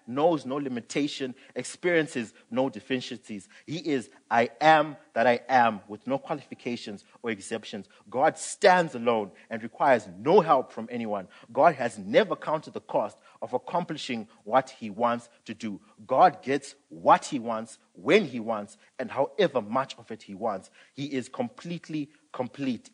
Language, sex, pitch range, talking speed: English, male, 110-140 Hz, 155 wpm